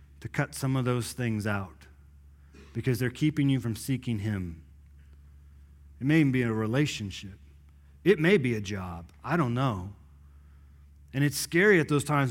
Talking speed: 165 wpm